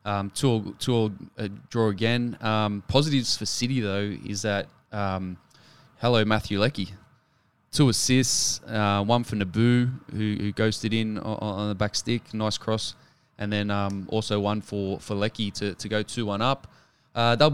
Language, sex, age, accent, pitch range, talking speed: English, male, 20-39, Australian, 105-120 Hz, 180 wpm